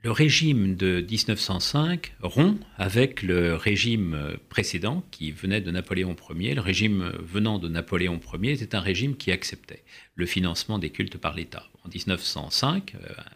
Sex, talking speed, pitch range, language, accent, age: male, 150 wpm, 90-125 Hz, French, French, 50-69